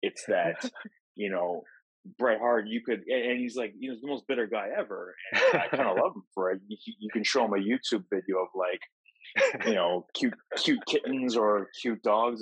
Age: 20-39